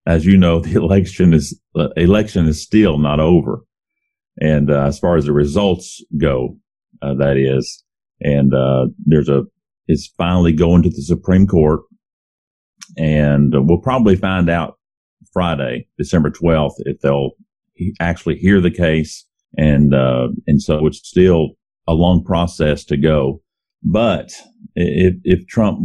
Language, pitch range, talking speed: English, 75-95 Hz, 150 wpm